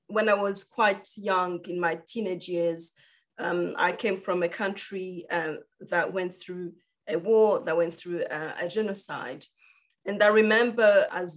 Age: 30-49